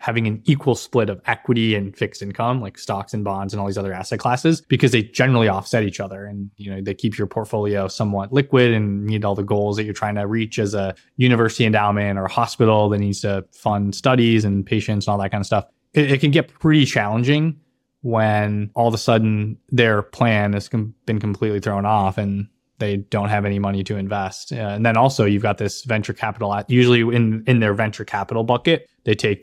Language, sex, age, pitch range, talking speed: English, male, 20-39, 100-115 Hz, 220 wpm